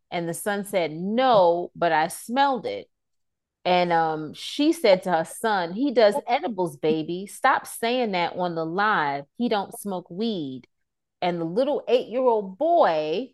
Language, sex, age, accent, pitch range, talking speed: English, female, 30-49, American, 160-210 Hz, 155 wpm